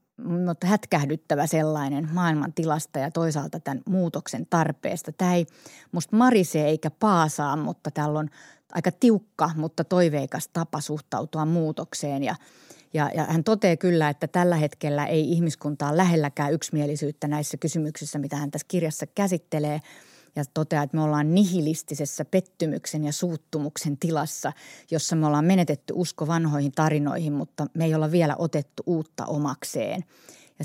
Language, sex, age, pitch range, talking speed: Finnish, female, 30-49, 150-175 Hz, 140 wpm